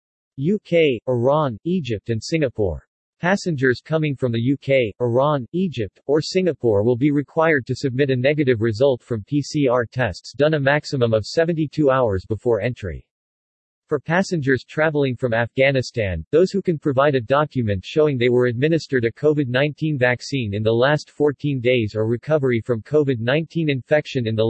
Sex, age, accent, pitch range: male, 40-59, American, 120-150 Hz